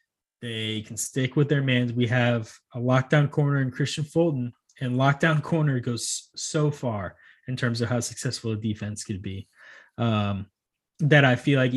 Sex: male